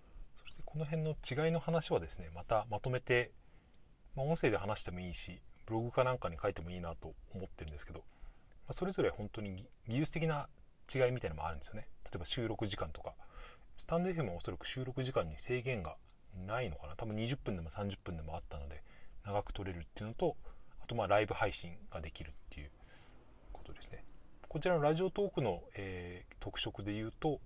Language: Japanese